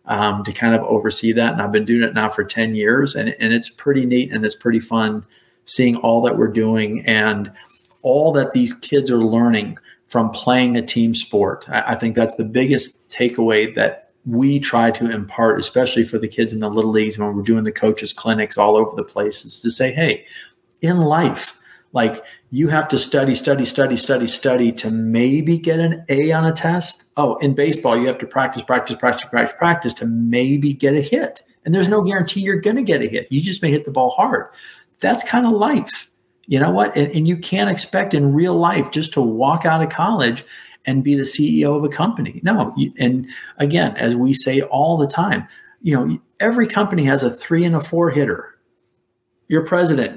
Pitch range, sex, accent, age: 115-165 Hz, male, American, 40-59